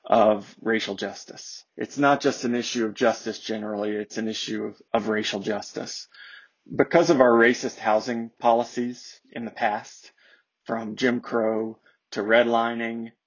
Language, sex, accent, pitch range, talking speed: English, male, American, 110-125 Hz, 145 wpm